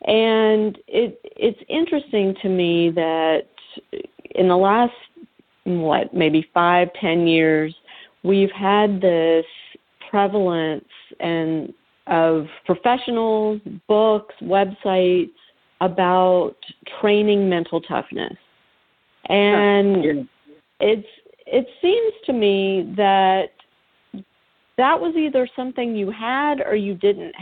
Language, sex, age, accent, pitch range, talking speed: English, female, 40-59, American, 175-230 Hz, 95 wpm